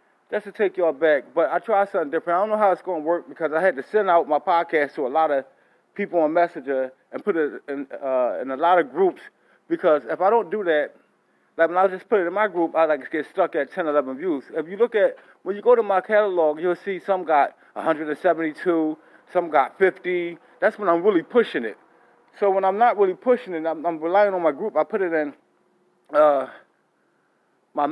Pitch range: 145-195 Hz